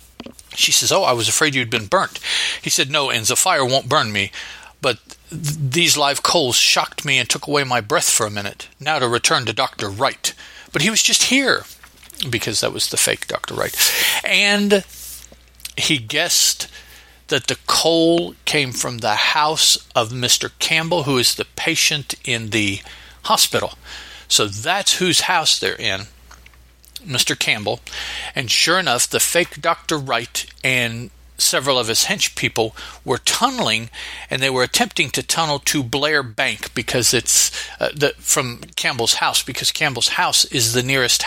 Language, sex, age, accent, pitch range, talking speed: English, male, 50-69, American, 115-160 Hz, 165 wpm